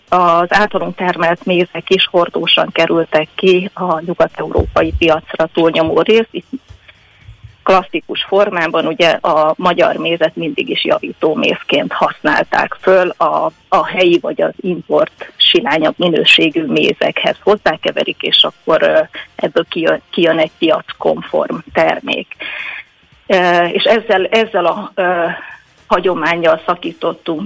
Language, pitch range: Hungarian, 165-190 Hz